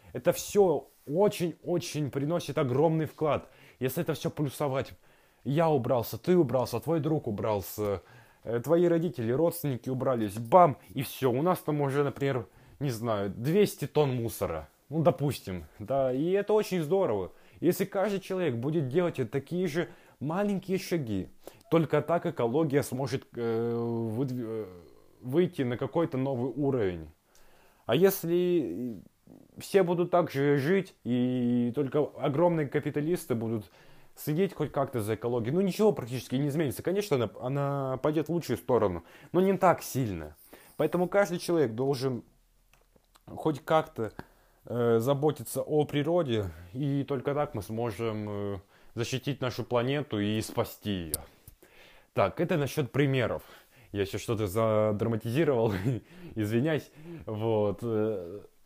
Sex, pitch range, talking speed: male, 115-165 Hz, 125 wpm